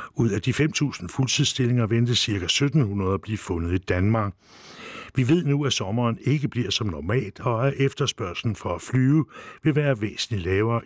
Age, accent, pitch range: 60-79, Danish, 95-130 Hz